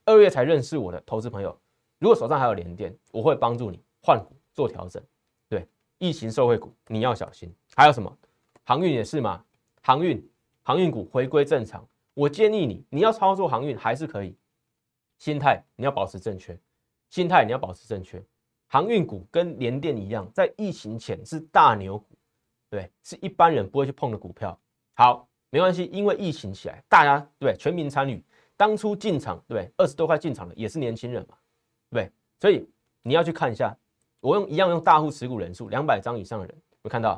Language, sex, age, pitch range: Chinese, male, 30-49, 110-150 Hz